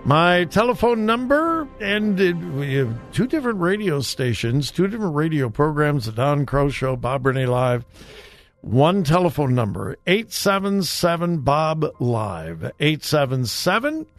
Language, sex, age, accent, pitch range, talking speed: English, male, 60-79, American, 125-200 Hz, 110 wpm